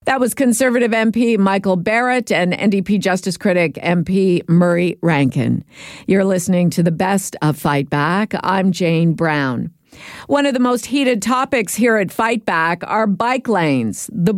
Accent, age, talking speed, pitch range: American, 50-69, 160 wpm, 160-215 Hz